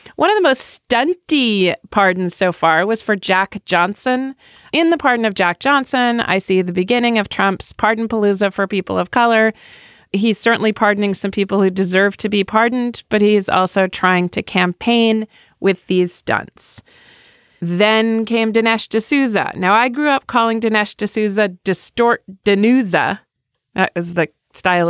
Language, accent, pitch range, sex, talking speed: English, American, 180-225 Hz, female, 160 wpm